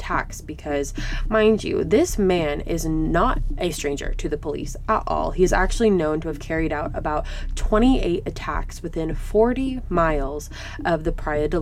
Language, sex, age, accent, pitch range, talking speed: English, female, 20-39, American, 150-170 Hz, 165 wpm